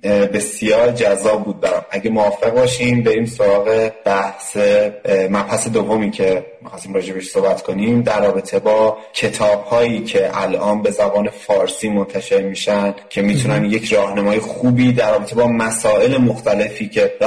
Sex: male